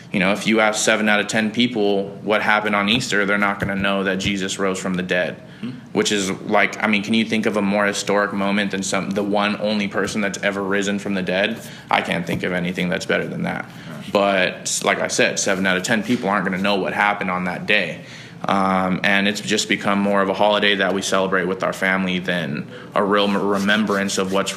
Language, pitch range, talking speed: English, 95-105 Hz, 235 wpm